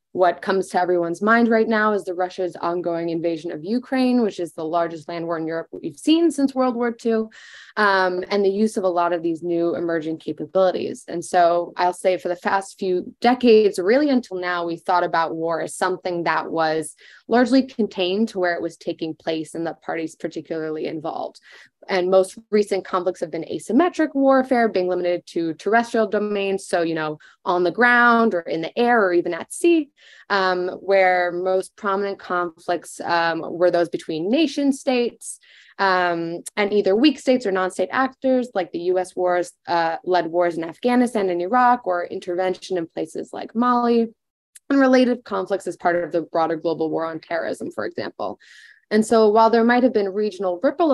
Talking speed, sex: 185 wpm, female